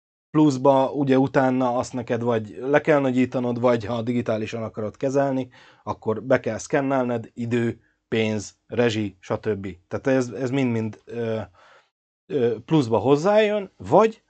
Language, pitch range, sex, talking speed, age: Hungarian, 110-145 Hz, male, 130 wpm, 30-49